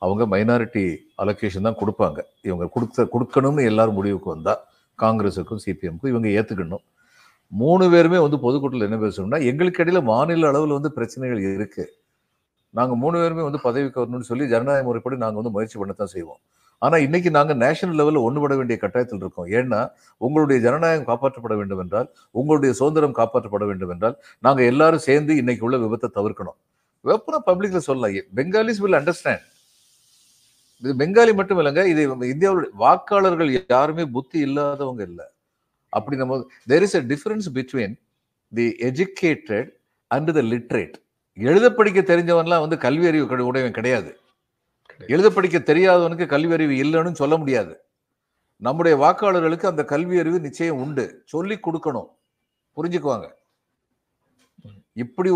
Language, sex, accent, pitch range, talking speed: Tamil, male, native, 115-165 Hz, 110 wpm